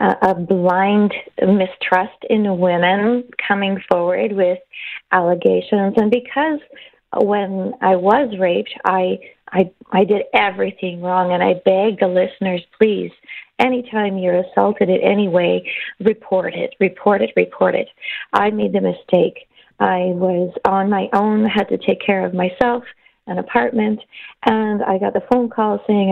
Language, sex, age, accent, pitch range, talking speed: English, female, 40-59, American, 185-215 Hz, 145 wpm